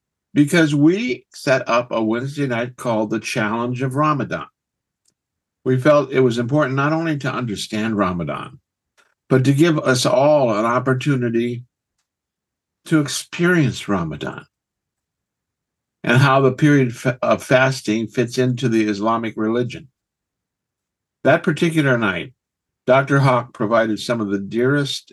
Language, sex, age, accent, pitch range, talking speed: English, male, 60-79, American, 110-135 Hz, 125 wpm